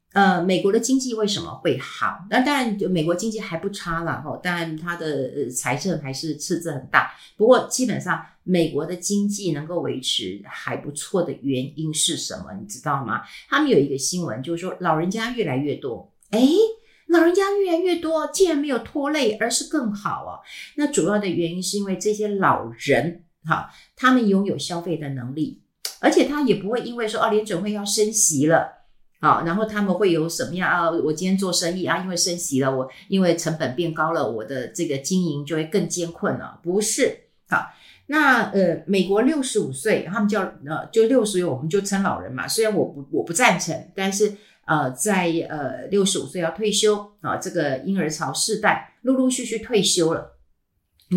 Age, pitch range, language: 50-69, 160-220 Hz, Chinese